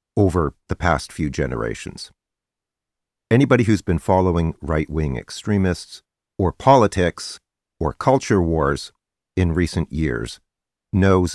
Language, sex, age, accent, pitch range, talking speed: English, male, 50-69, American, 80-100 Hz, 105 wpm